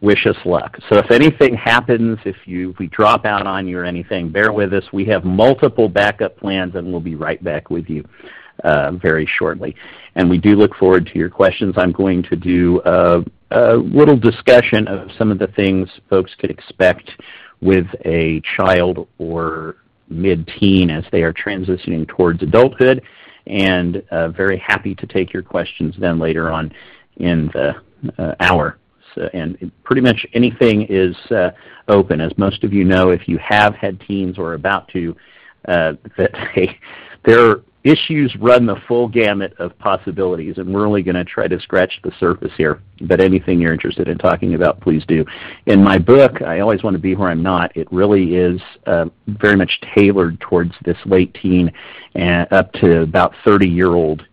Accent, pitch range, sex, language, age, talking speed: American, 85-100 Hz, male, English, 50-69, 180 wpm